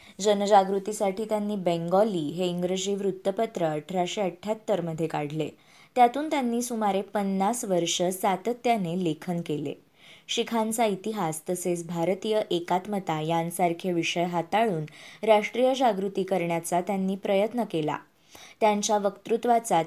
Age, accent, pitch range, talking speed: 20-39, native, 170-215 Hz, 100 wpm